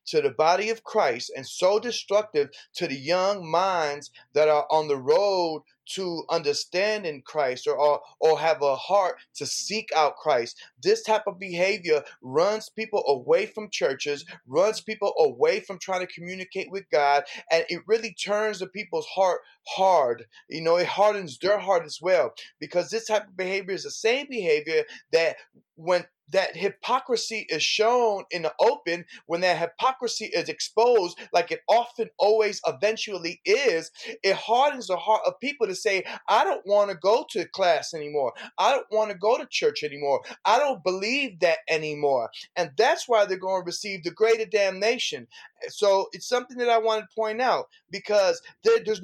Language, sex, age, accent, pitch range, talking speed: English, male, 30-49, American, 175-240 Hz, 175 wpm